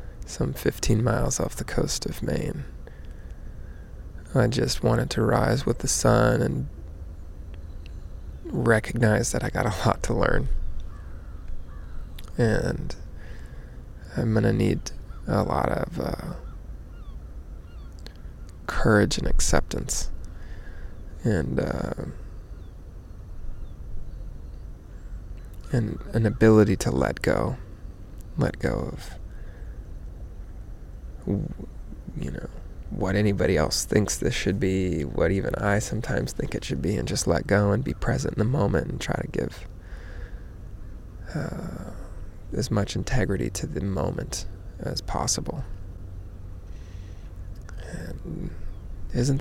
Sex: male